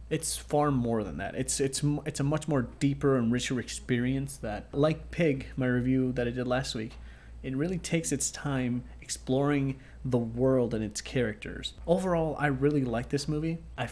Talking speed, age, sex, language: 185 wpm, 30-49, male, English